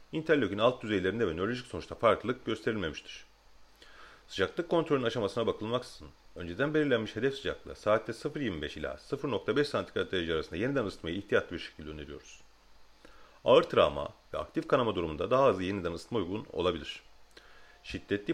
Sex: male